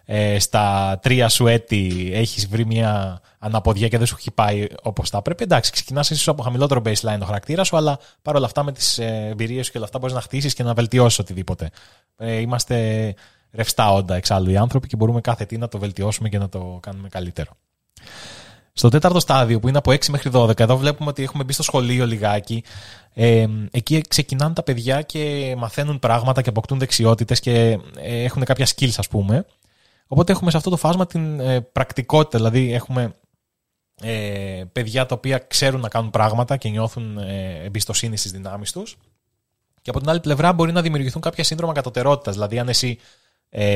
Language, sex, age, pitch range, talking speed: Greek, male, 20-39, 105-135 Hz, 185 wpm